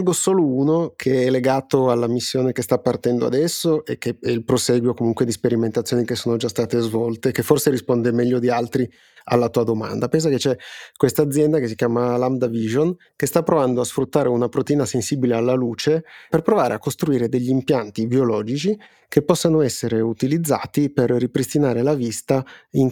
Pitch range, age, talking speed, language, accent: 115-140 Hz, 30-49, 180 wpm, Italian, native